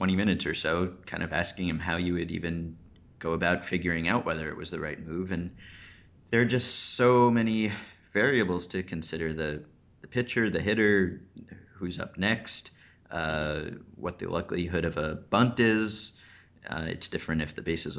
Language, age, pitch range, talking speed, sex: English, 30-49, 85-105 Hz, 175 wpm, male